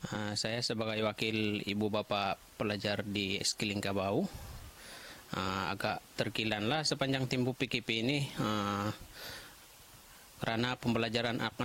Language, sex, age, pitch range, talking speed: Malay, male, 30-49, 115-135 Hz, 90 wpm